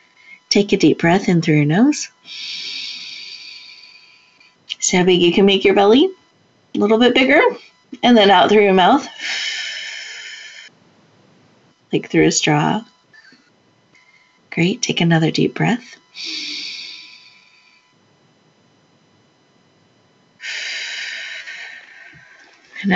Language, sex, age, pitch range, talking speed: English, female, 40-59, 160-230 Hz, 95 wpm